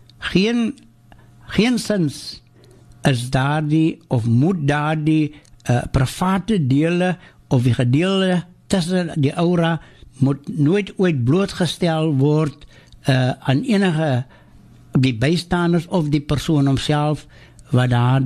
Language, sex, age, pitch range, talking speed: English, male, 60-79, 125-175 Hz, 115 wpm